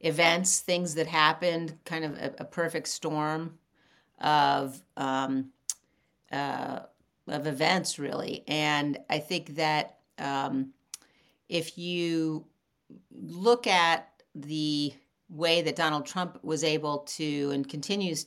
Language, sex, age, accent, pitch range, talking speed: English, female, 50-69, American, 150-170 Hz, 115 wpm